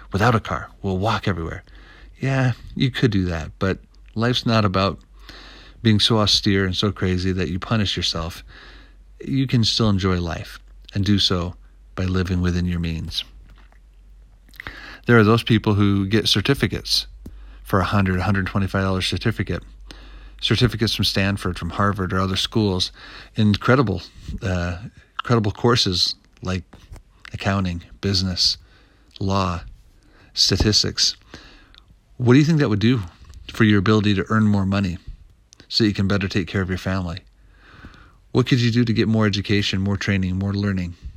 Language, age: English, 40-59